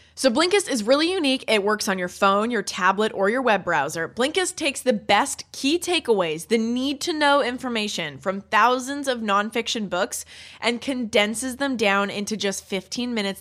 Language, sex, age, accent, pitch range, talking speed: English, female, 20-39, American, 195-275 Hz, 170 wpm